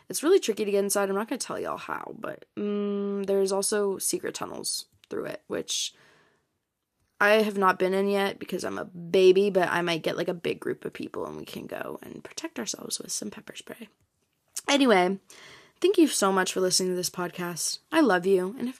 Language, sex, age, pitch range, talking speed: English, female, 20-39, 185-225 Hz, 215 wpm